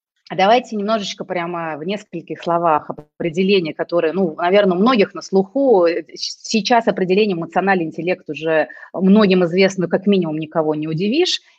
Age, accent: 30-49, native